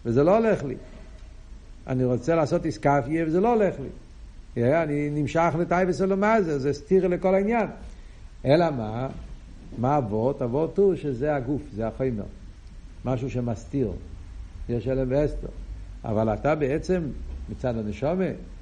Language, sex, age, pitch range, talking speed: Hebrew, male, 60-79, 130-210 Hz, 130 wpm